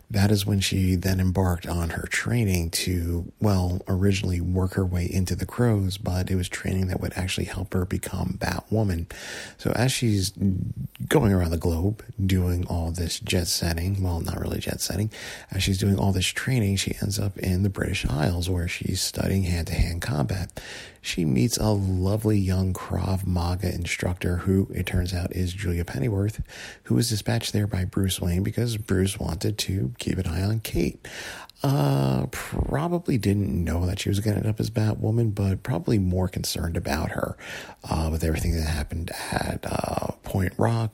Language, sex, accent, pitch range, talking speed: English, male, American, 85-100 Hz, 180 wpm